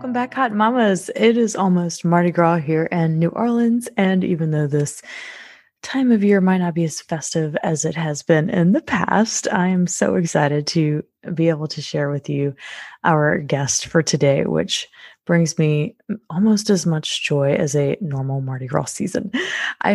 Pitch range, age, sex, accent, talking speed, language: 155-200 Hz, 20-39, female, American, 185 wpm, English